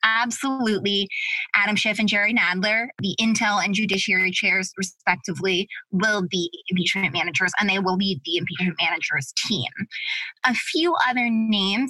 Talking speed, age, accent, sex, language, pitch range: 140 wpm, 20-39, American, female, English, 185-225 Hz